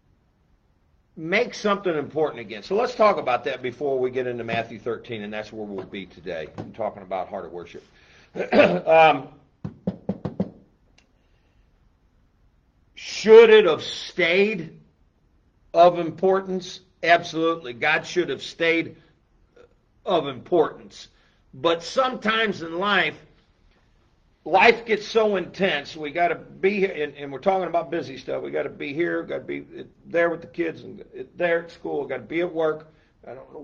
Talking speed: 150 wpm